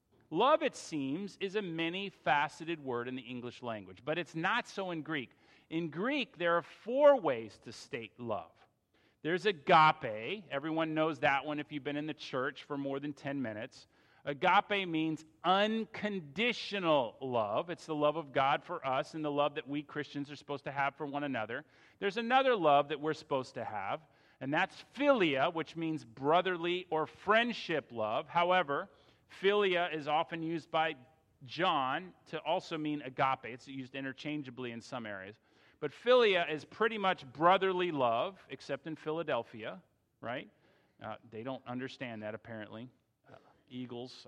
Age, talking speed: 40-59, 165 wpm